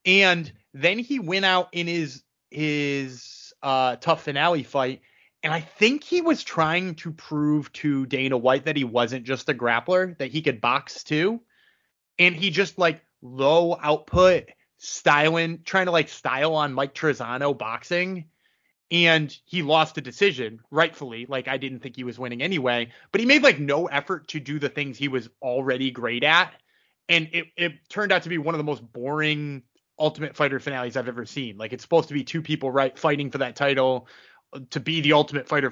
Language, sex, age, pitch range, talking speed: English, male, 20-39, 130-170 Hz, 190 wpm